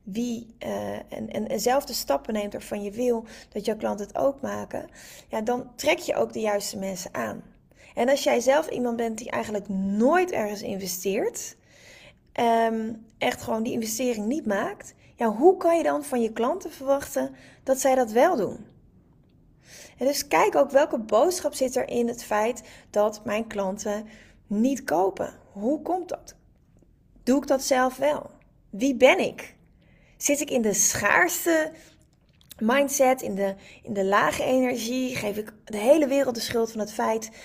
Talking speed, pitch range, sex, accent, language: 160 wpm, 215-275 Hz, female, Dutch, Dutch